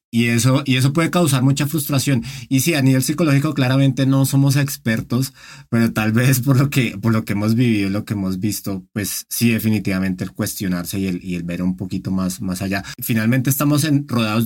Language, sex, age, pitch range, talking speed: Spanish, male, 30-49, 100-130 Hz, 215 wpm